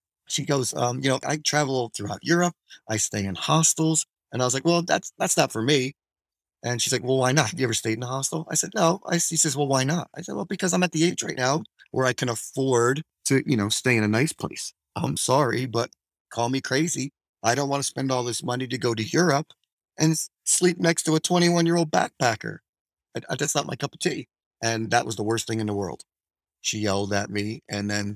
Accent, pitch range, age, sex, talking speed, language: American, 110-135 Hz, 30-49, male, 245 wpm, English